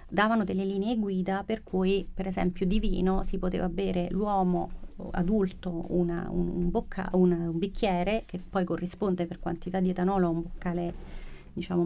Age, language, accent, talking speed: 40-59, Italian, native, 165 wpm